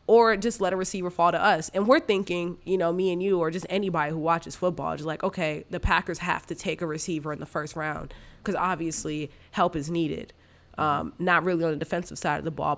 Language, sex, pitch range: English, female, 155-185 Hz